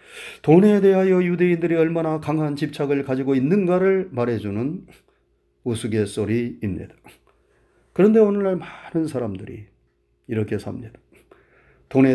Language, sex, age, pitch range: Korean, male, 40-59, 115-180 Hz